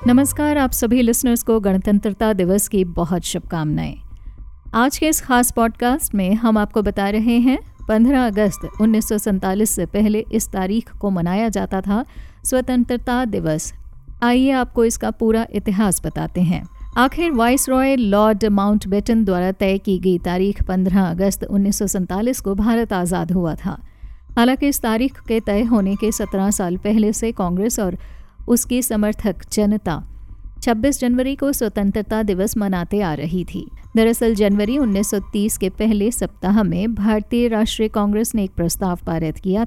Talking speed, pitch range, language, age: 150 wpm, 195-235 Hz, Hindi, 50-69